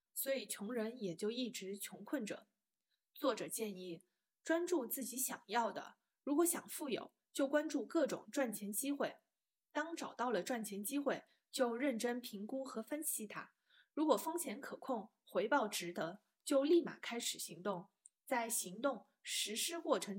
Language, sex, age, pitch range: Chinese, female, 20-39, 200-280 Hz